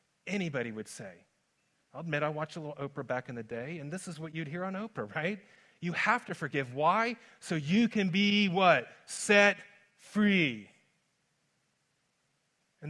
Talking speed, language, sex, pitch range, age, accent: 165 wpm, English, male, 130-170 Hz, 40-59, American